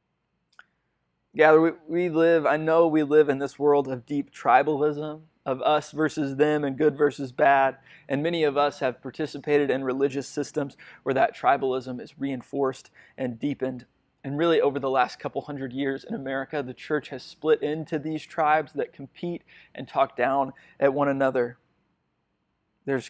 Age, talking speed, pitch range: 20-39, 165 wpm, 135-155 Hz